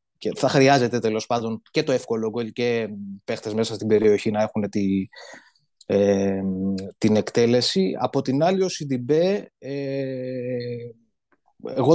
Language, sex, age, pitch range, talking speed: Greek, male, 20-39, 110-150 Hz, 115 wpm